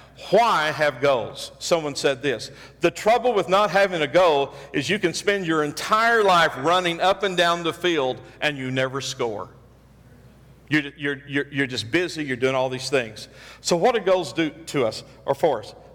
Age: 50-69